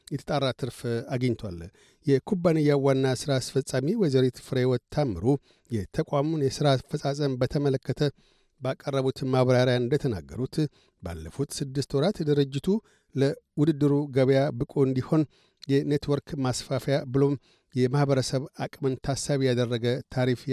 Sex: male